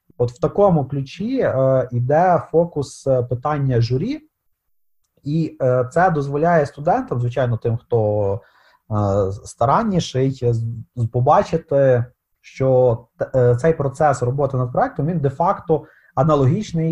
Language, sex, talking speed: Ukrainian, male, 115 wpm